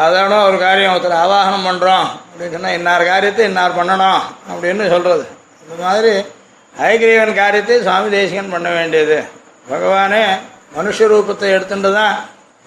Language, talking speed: Tamil, 135 wpm